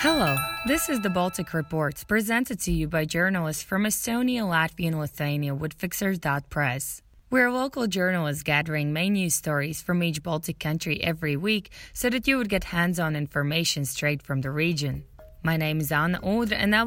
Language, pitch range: English, 150-195 Hz